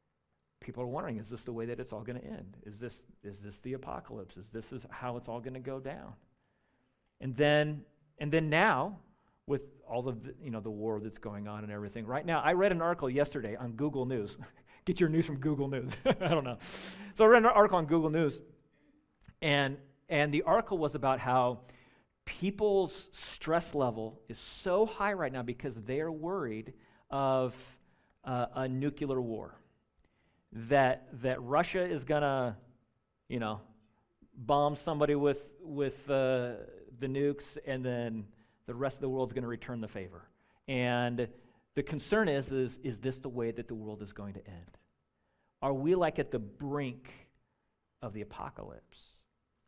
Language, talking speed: English, 180 wpm